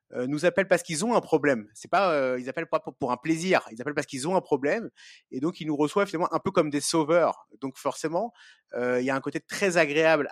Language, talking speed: French, 260 wpm